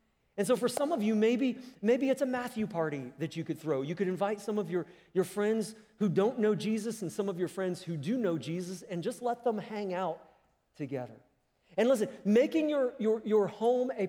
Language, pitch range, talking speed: English, 170-235 Hz, 220 wpm